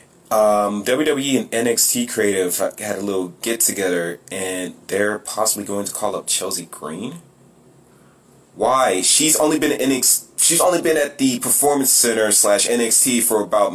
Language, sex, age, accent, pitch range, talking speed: English, male, 30-49, American, 115-150 Hz, 150 wpm